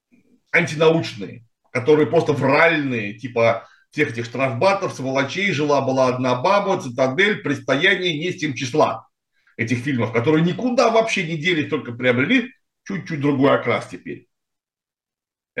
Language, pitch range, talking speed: Russian, 130-180 Hz, 120 wpm